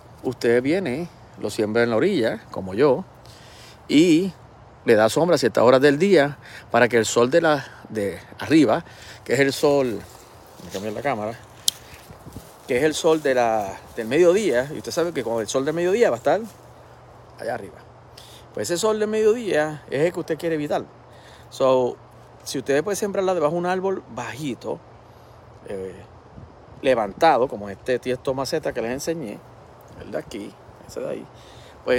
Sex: male